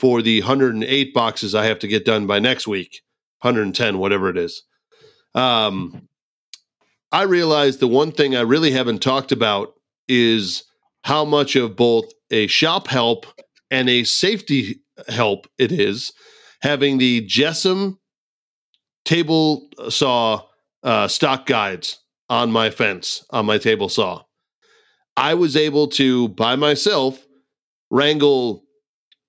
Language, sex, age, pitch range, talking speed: English, male, 40-59, 120-150 Hz, 130 wpm